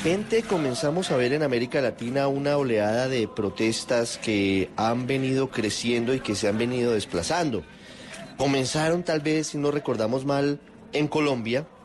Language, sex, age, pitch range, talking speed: Spanish, male, 30-49, 110-140 Hz, 150 wpm